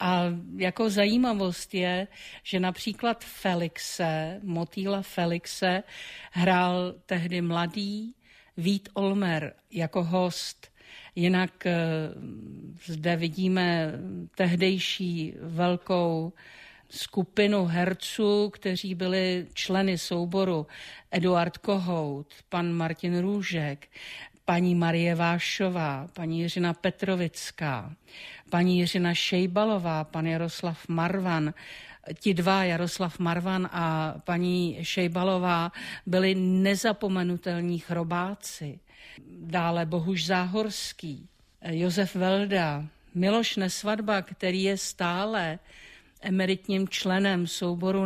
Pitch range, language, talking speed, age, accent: 170-190 Hz, Czech, 80 wpm, 50-69, native